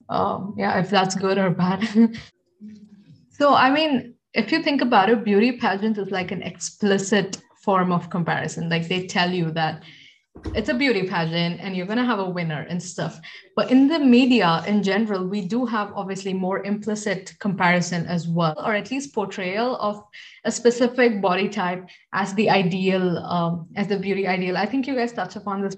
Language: English